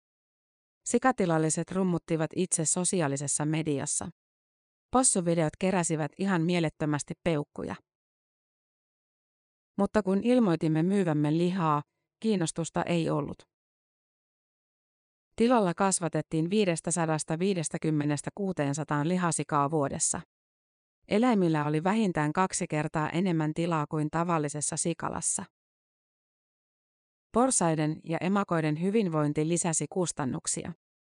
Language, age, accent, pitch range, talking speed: Finnish, 30-49, native, 155-185 Hz, 75 wpm